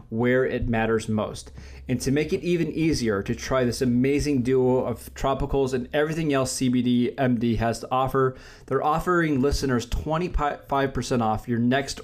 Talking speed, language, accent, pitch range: 155 wpm, English, American, 120-145 Hz